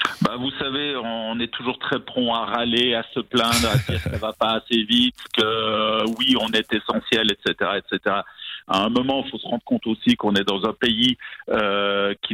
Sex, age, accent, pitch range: male, 50-69, French, 110-165 Hz